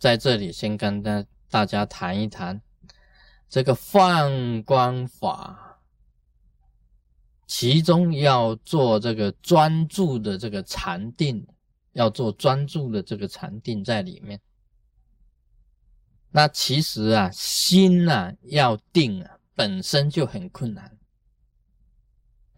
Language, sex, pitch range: Chinese, male, 110-175 Hz